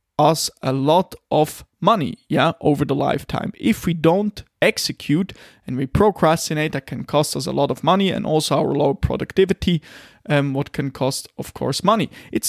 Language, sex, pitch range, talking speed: English, male, 140-180 Hz, 185 wpm